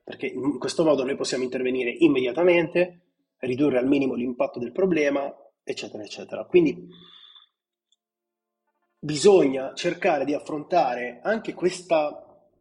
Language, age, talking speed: Italian, 30-49, 110 wpm